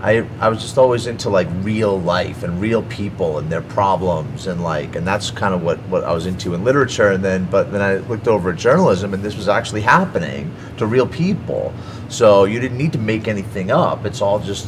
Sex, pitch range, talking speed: male, 90-115 Hz, 230 wpm